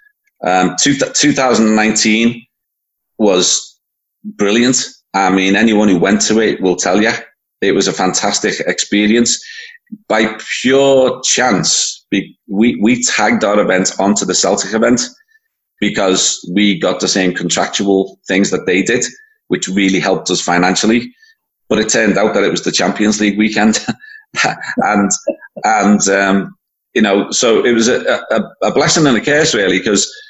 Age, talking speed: 30-49, 150 wpm